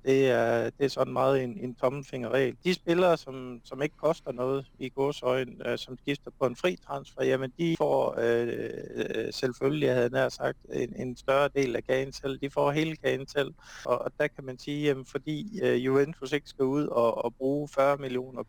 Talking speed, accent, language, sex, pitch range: 200 wpm, native, Danish, male, 125-140 Hz